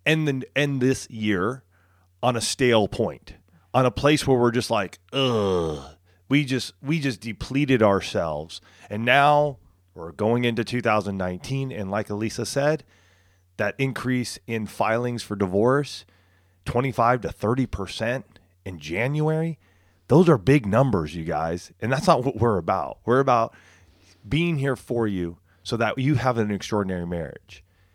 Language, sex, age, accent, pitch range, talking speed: English, male, 30-49, American, 95-140 Hz, 150 wpm